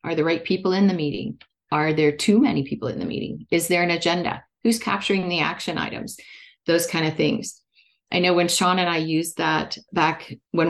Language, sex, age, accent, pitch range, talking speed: English, female, 40-59, American, 155-185 Hz, 215 wpm